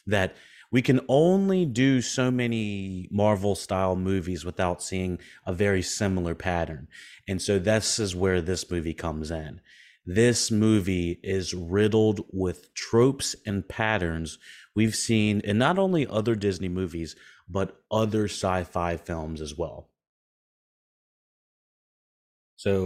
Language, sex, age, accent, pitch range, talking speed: English, male, 30-49, American, 85-110 Hz, 130 wpm